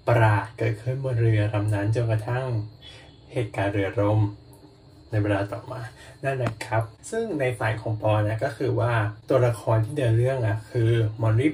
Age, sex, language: 20-39, male, Thai